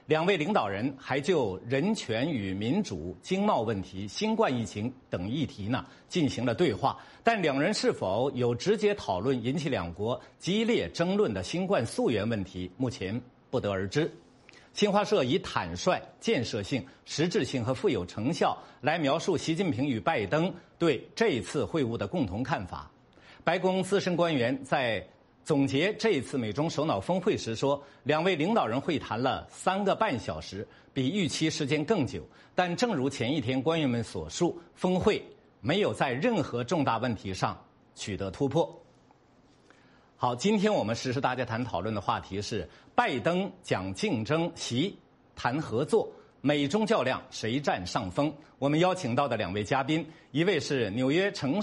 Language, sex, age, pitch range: Chinese, male, 50-69, 120-180 Hz